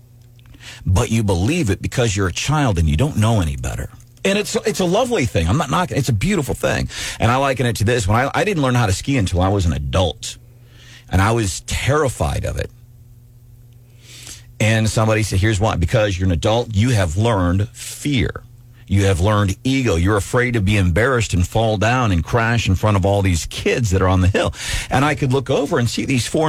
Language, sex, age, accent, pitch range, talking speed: English, male, 40-59, American, 100-125 Hz, 225 wpm